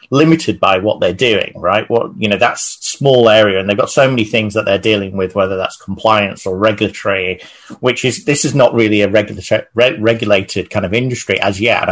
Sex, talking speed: male, 215 wpm